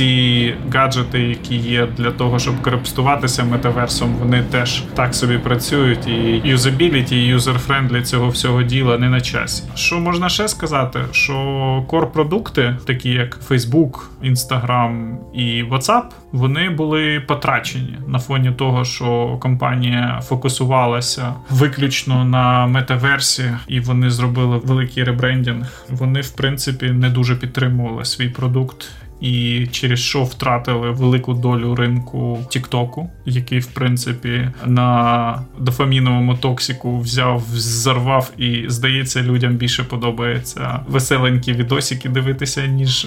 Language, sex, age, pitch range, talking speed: Ukrainian, male, 20-39, 125-135 Hz, 120 wpm